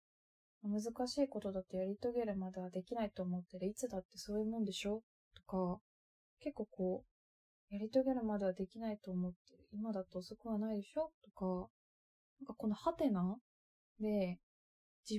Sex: female